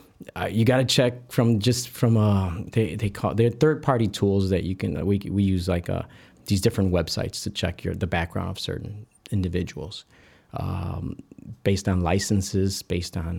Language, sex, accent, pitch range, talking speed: English, male, American, 95-115 Hz, 185 wpm